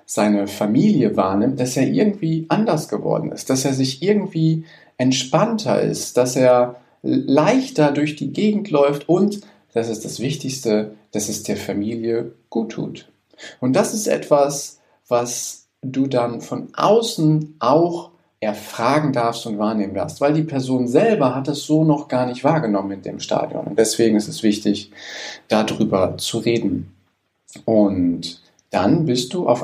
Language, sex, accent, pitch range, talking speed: German, male, German, 115-155 Hz, 150 wpm